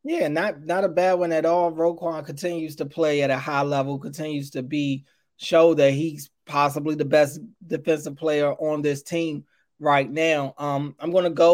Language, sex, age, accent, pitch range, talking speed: English, male, 20-39, American, 155-175 Hz, 190 wpm